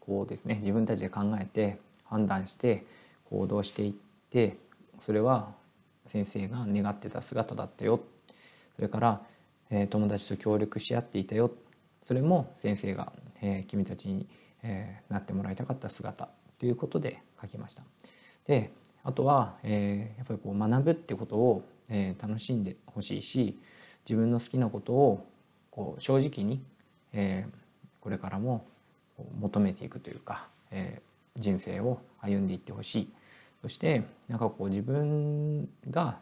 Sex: male